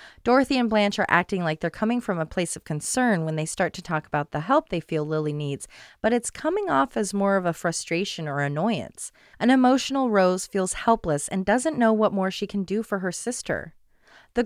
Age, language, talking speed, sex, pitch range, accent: 30-49, English, 220 wpm, female, 170-240 Hz, American